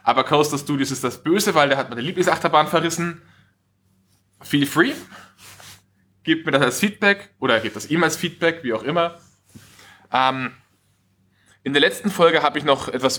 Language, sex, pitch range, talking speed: German, male, 110-145 Hz, 170 wpm